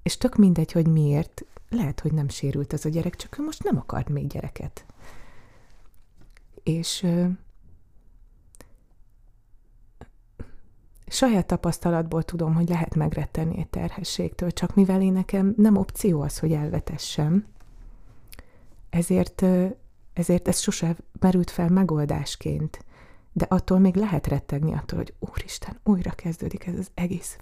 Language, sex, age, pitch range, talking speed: Hungarian, female, 30-49, 150-185 Hz, 130 wpm